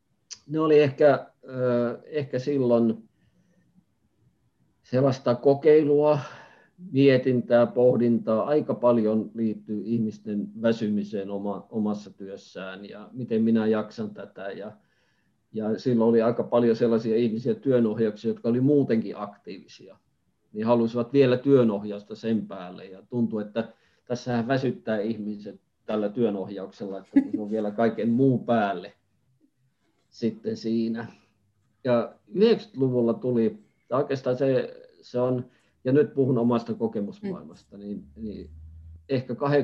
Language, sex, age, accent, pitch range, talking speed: Finnish, male, 50-69, native, 105-125 Hz, 105 wpm